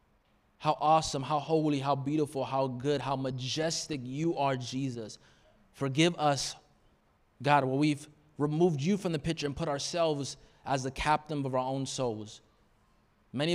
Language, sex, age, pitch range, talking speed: English, male, 20-39, 125-155 Hz, 150 wpm